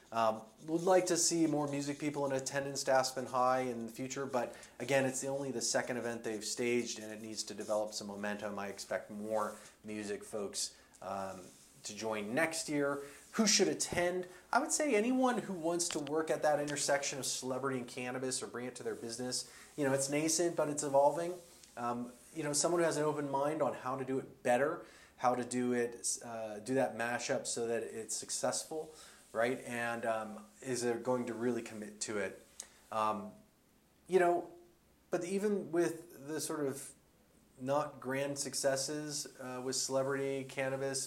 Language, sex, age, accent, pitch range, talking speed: English, male, 30-49, American, 120-150 Hz, 190 wpm